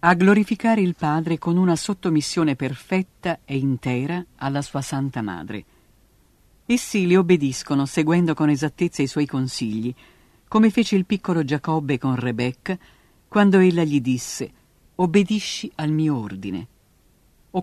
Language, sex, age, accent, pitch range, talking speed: Italian, female, 50-69, native, 135-180 Hz, 135 wpm